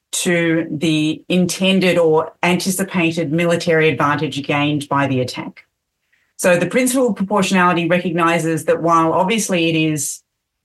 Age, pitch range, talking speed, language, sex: 30-49, 160-185 Hz, 130 wpm, English, female